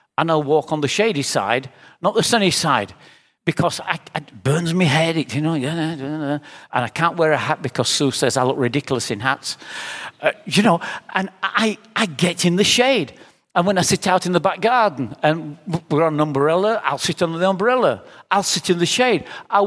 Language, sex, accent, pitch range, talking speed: English, male, British, 160-220 Hz, 205 wpm